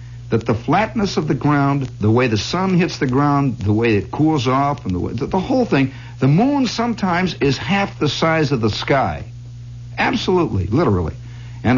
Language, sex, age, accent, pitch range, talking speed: English, male, 60-79, American, 120-180 Hz, 185 wpm